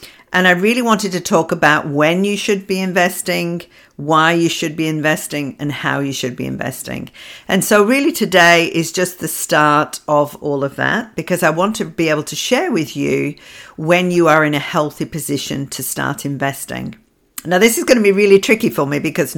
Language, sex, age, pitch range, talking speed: English, female, 50-69, 145-185 Hz, 205 wpm